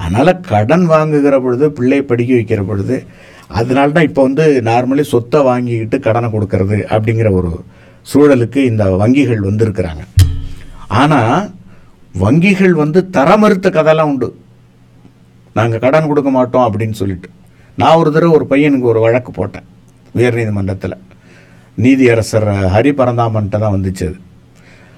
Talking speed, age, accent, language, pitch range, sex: 105 wpm, 50-69, Indian, English, 95-150 Hz, male